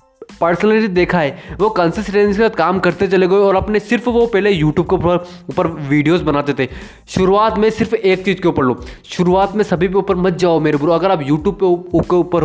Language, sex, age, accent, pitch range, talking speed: Hindi, male, 20-39, native, 160-195 Hz, 215 wpm